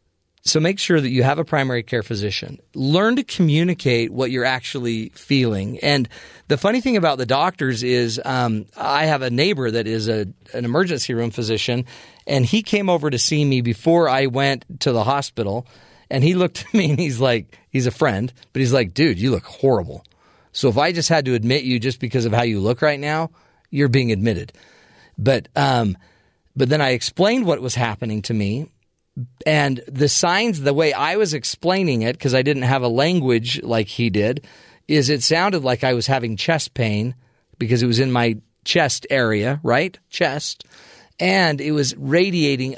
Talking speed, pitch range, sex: 190 wpm, 115-145 Hz, male